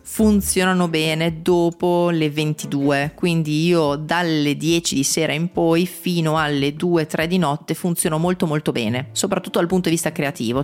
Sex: female